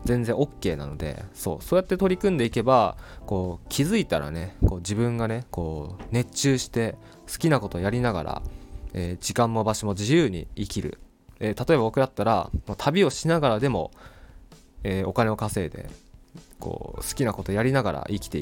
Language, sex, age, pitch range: Japanese, male, 20-39, 90-125 Hz